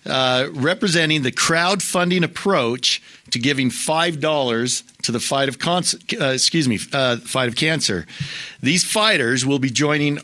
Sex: male